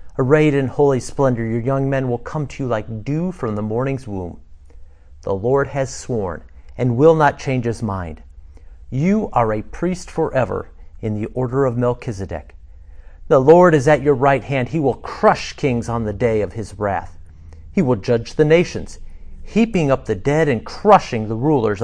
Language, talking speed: English, 185 wpm